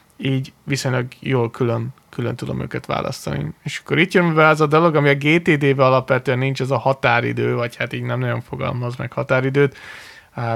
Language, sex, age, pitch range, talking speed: Hungarian, male, 20-39, 115-135 Hz, 190 wpm